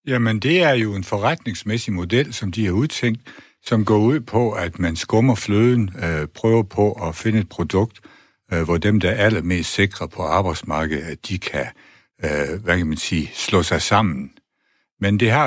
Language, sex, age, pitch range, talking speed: Danish, male, 60-79, 85-115 Hz, 190 wpm